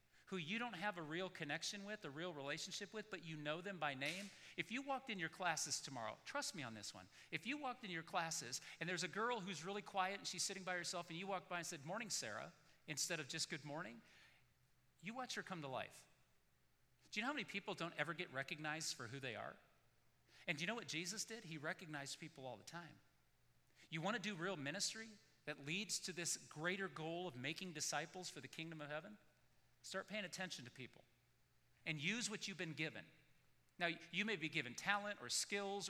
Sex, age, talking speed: male, 40-59, 220 wpm